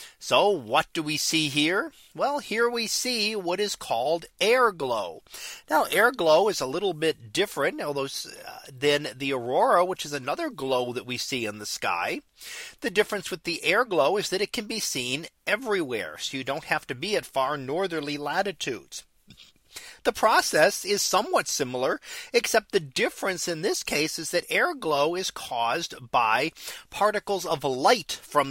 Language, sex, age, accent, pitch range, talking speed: English, male, 40-59, American, 135-205 Hz, 175 wpm